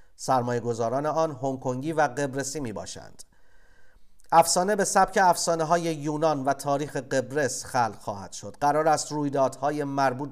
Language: Persian